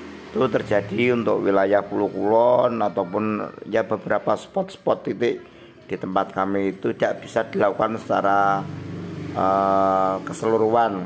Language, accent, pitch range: Indonesian, native, 100-115 Hz